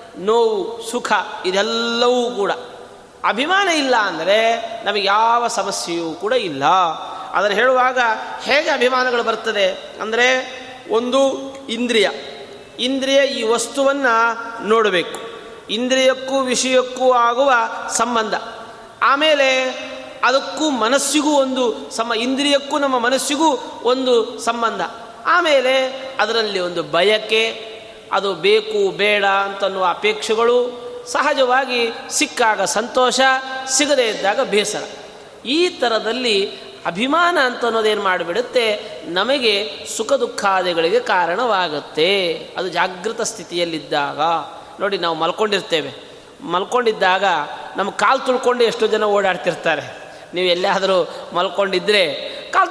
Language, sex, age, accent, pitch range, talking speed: Kannada, male, 30-49, native, 205-265 Hz, 90 wpm